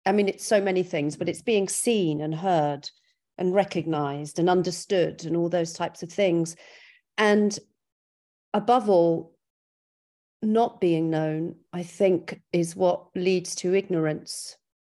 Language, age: English, 40-59